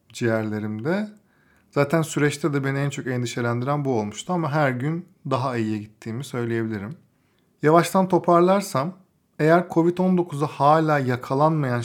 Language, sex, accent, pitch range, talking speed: Turkish, male, native, 120-150 Hz, 115 wpm